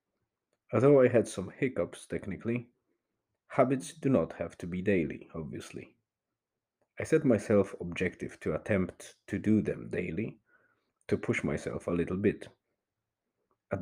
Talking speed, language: 135 wpm, English